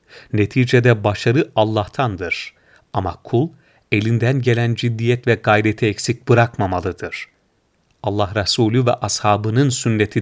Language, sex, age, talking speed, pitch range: Turkish, male, 40-59, 100 wpm, 105-130 Hz